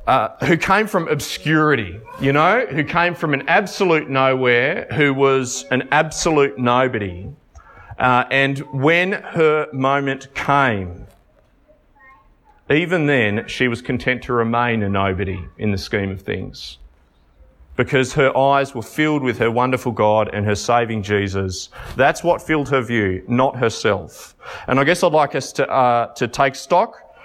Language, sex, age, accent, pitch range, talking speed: English, male, 30-49, Australian, 115-150 Hz, 150 wpm